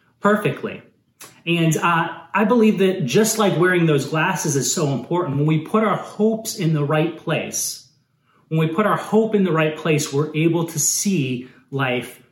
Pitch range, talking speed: 145-185 Hz, 180 wpm